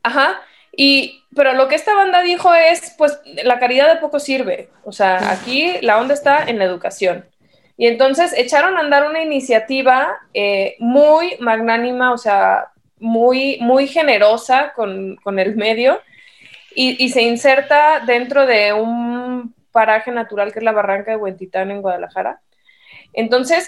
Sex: female